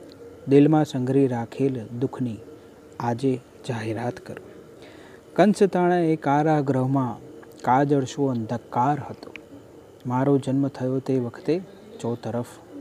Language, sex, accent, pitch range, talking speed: Gujarati, male, native, 125-150 Hz, 95 wpm